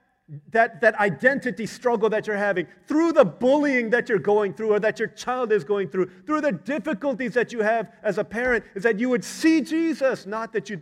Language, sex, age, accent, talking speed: English, male, 40-59, American, 215 wpm